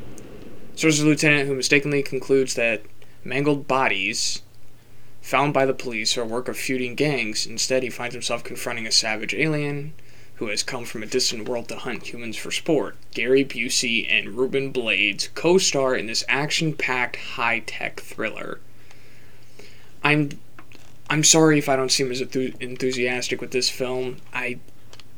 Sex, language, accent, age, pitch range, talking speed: male, English, American, 20-39, 115-140 Hz, 155 wpm